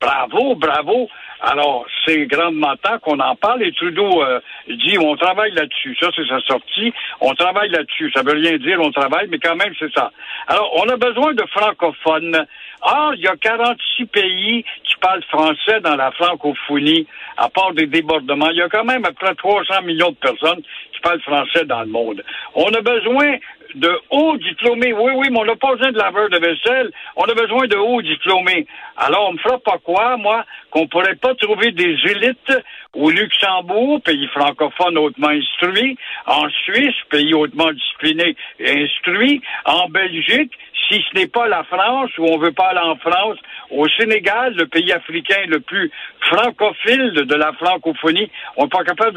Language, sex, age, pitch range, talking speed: French, male, 60-79, 160-235 Hz, 190 wpm